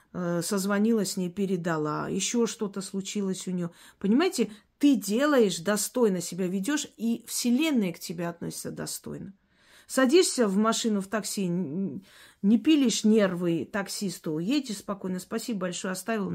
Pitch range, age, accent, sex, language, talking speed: 185-230 Hz, 40-59, native, female, Russian, 130 wpm